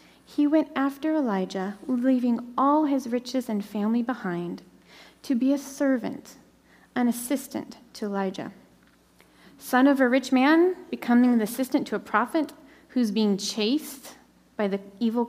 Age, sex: 30-49, female